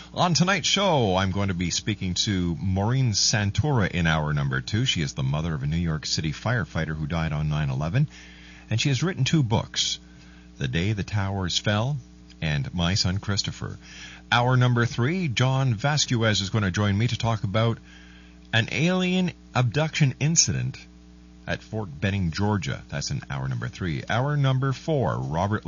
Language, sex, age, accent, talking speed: English, male, 50-69, American, 175 wpm